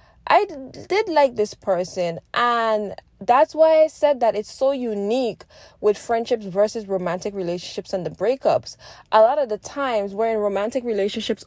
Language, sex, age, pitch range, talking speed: English, female, 10-29, 195-260 Hz, 160 wpm